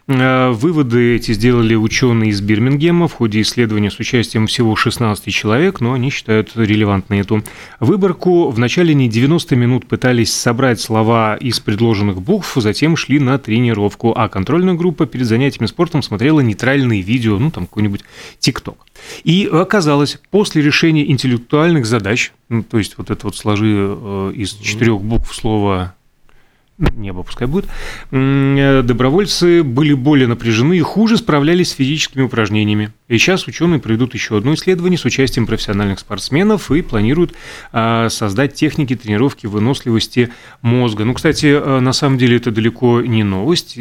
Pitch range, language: 110-145 Hz, Russian